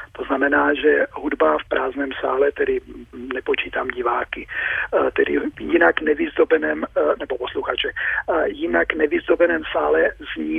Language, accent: Czech, native